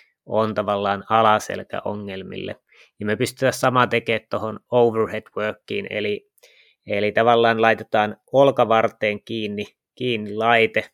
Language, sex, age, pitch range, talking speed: Finnish, male, 20-39, 105-125 Hz, 110 wpm